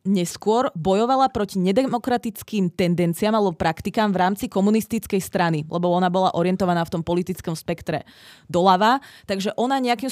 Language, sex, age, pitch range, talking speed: Czech, female, 20-39, 170-210 Hz, 135 wpm